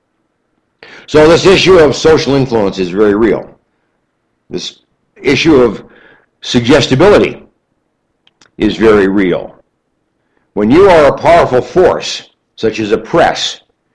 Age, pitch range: 60-79, 110-145 Hz